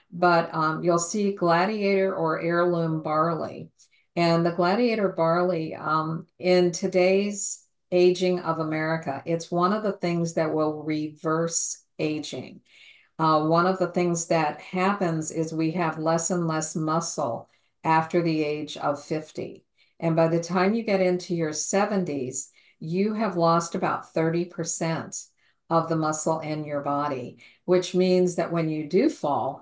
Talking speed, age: 150 wpm, 50-69